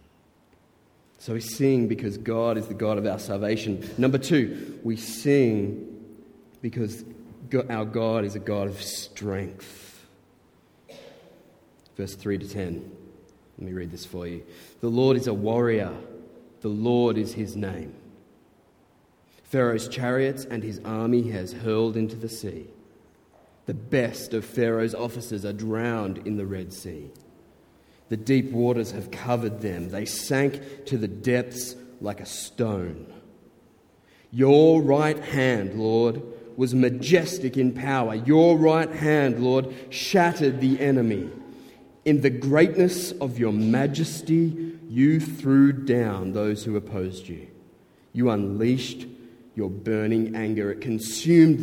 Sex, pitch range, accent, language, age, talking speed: male, 105-130 Hz, Australian, English, 30-49, 130 wpm